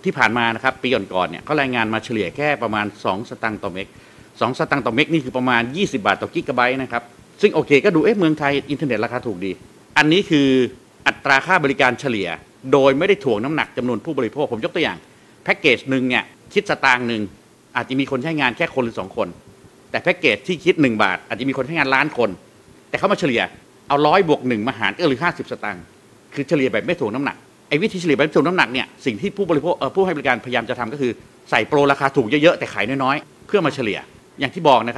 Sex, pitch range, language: male, 125-150 Hz, Thai